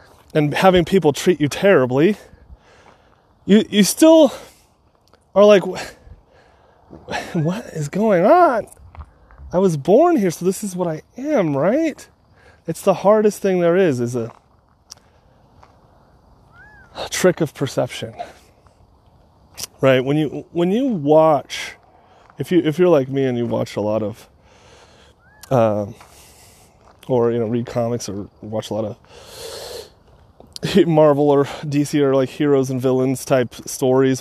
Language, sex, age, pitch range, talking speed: English, male, 30-49, 120-175 Hz, 135 wpm